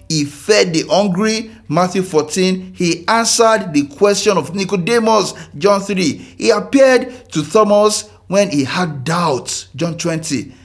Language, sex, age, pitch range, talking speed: English, male, 50-69, 115-180 Hz, 135 wpm